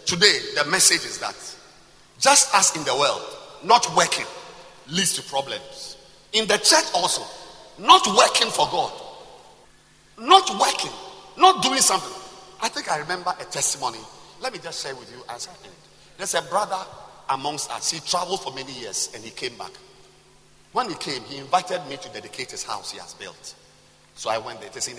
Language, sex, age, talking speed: English, male, 50-69, 180 wpm